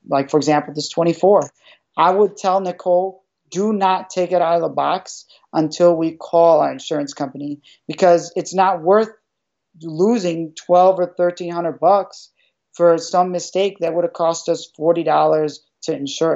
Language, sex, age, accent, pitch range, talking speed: English, male, 40-59, American, 155-185 Hz, 160 wpm